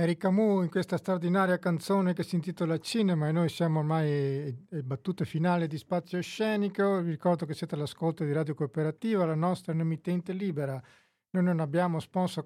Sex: male